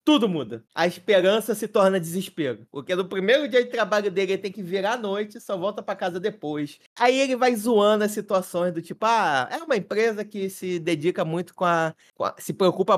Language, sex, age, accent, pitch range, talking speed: Portuguese, male, 20-39, Brazilian, 165-235 Hz, 215 wpm